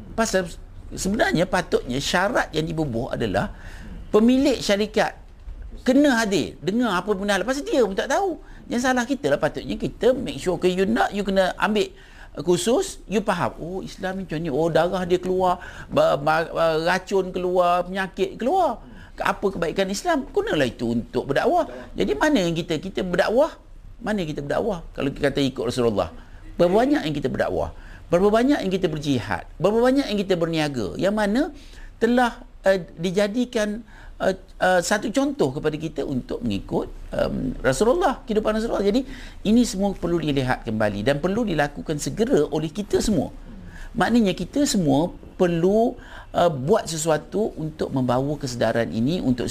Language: Malay